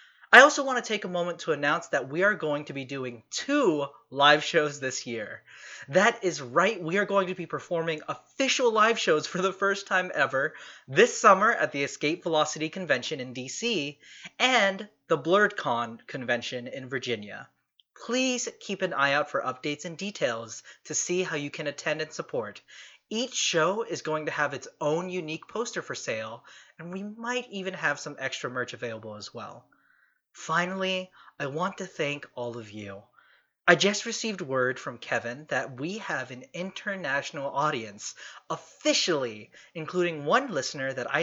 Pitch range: 135-190 Hz